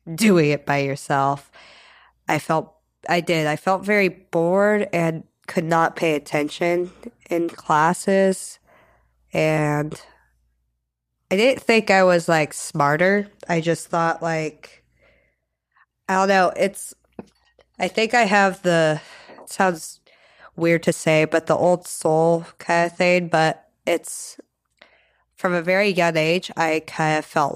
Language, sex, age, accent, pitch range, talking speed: English, female, 20-39, American, 145-175 Hz, 135 wpm